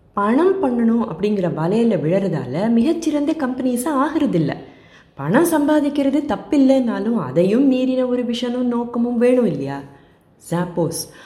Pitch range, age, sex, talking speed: 175-250 Hz, 20-39, female, 105 wpm